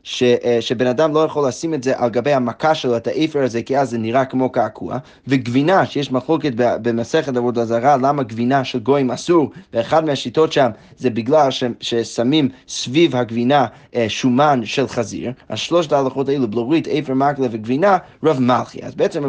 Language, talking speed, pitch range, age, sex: Hebrew, 175 wpm, 125-160 Hz, 20-39, male